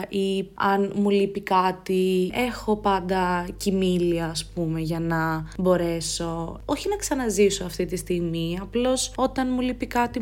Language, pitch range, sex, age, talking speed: Greek, 175-225 Hz, female, 20-39, 140 wpm